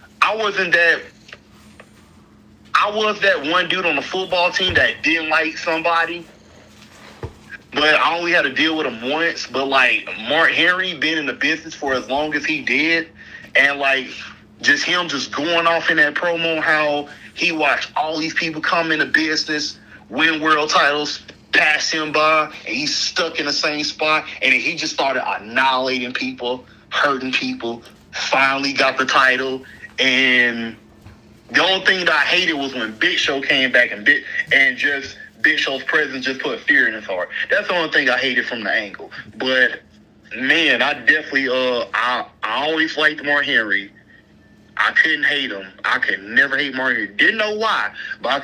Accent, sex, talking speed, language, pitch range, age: American, male, 180 wpm, English, 130-165 Hz, 30-49